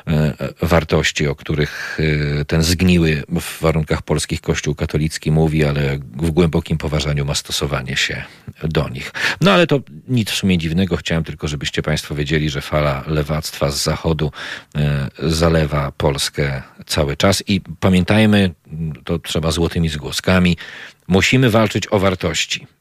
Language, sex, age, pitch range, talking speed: Polish, male, 40-59, 75-90 Hz, 130 wpm